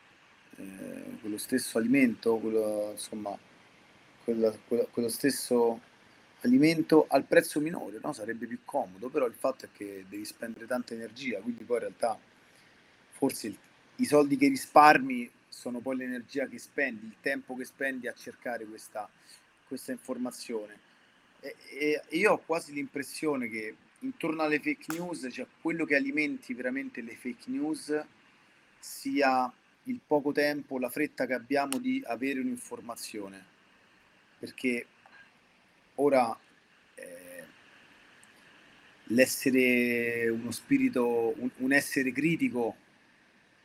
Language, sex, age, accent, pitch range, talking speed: Italian, male, 30-49, native, 115-150 Hz, 120 wpm